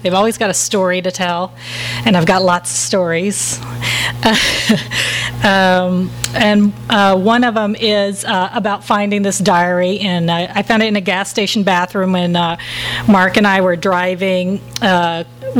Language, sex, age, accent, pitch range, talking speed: English, female, 40-59, American, 175-210 Hz, 160 wpm